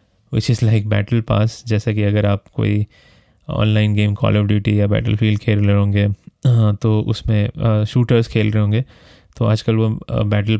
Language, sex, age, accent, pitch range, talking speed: Hindi, male, 20-39, native, 105-115 Hz, 175 wpm